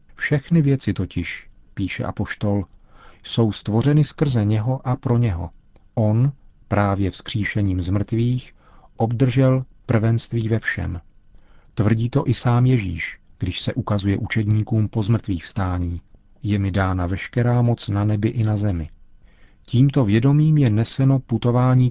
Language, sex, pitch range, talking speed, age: Czech, male, 100-120 Hz, 130 wpm, 40-59